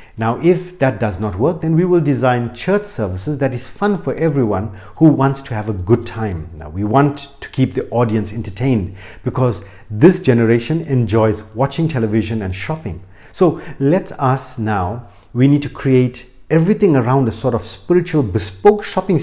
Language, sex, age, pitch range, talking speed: English, male, 50-69, 110-155 Hz, 175 wpm